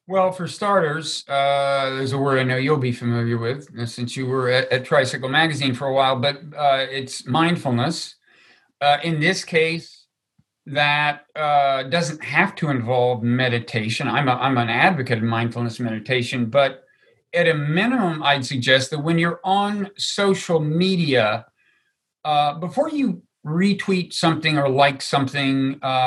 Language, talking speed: English, 150 wpm